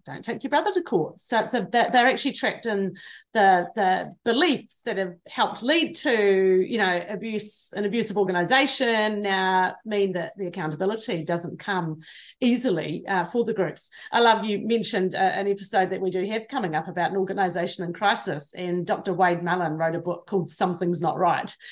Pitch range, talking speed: 190-255 Hz, 190 wpm